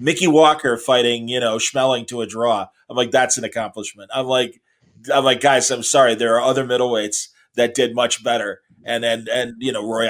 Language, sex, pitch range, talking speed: English, male, 110-135 Hz, 210 wpm